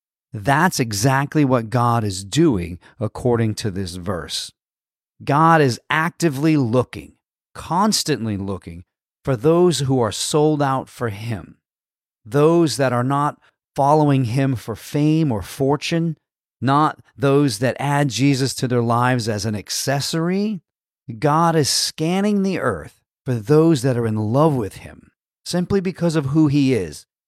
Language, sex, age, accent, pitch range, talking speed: English, male, 40-59, American, 115-150 Hz, 140 wpm